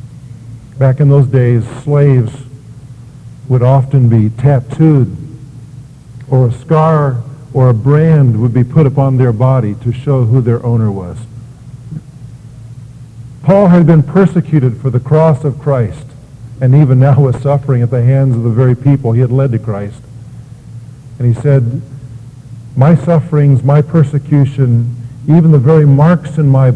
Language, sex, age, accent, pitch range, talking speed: English, male, 50-69, American, 120-145 Hz, 150 wpm